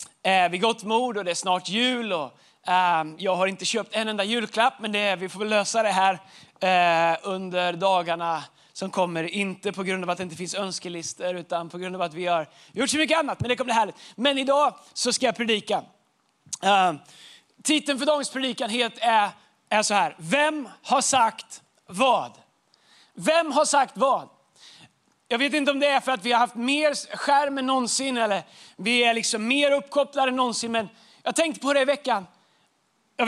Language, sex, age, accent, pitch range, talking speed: Swedish, male, 30-49, native, 200-285 Hz, 190 wpm